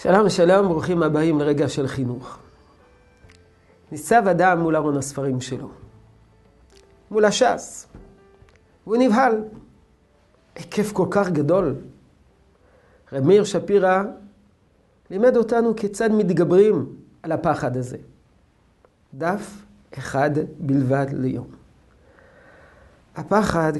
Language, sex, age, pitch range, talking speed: Hebrew, male, 50-69, 130-185 Hz, 90 wpm